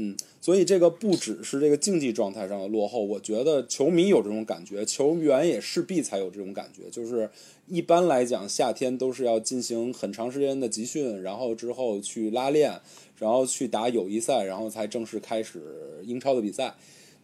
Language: Chinese